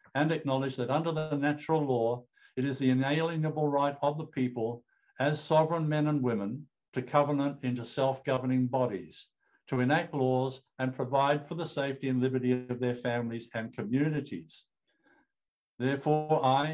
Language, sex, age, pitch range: English, male, 60-79, 120-145 Hz